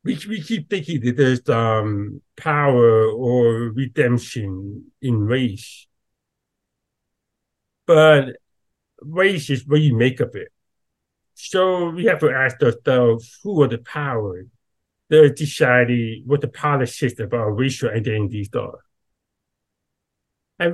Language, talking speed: English, 120 wpm